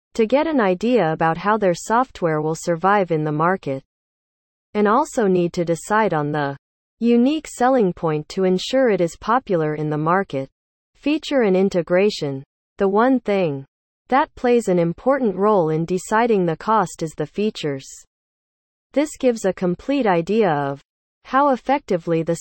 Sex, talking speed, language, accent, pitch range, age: female, 155 wpm, English, American, 160-230 Hz, 40-59